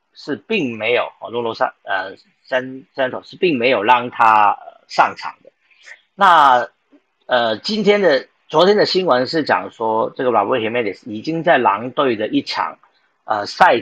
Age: 40-59